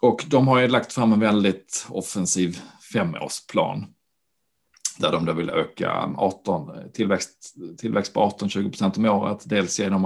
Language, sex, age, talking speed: Swedish, male, 40-59, 145 wpm